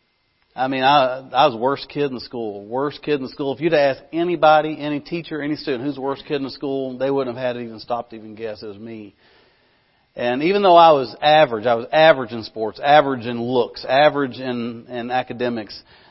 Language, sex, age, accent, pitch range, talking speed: English, male, 40-59, American, 115-145 Hz, 230 wpm